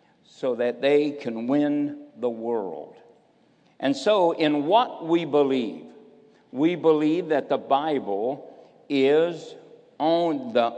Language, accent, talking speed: English, American, 110 wpm